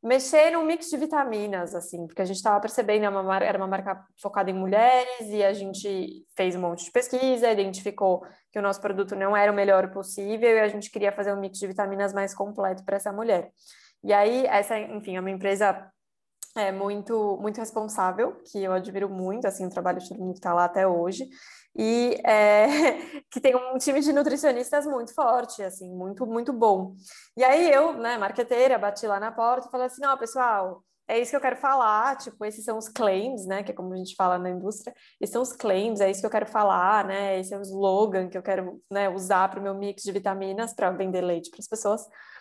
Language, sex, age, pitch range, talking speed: Portuguese, female, 20-39, 195-240 Hz, 220 wpm